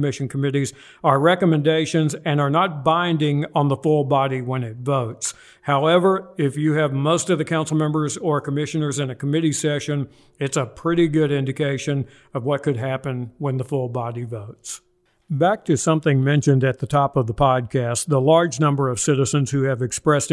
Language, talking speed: English, 185 wpm